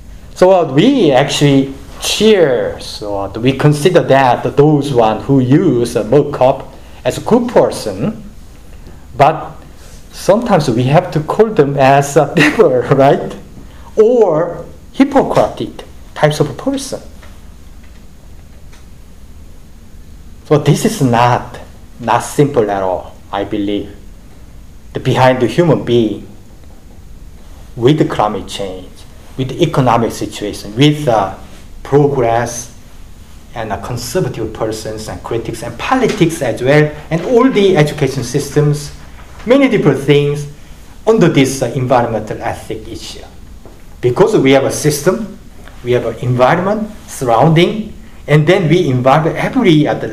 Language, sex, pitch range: Korean, male, 100-155 Hz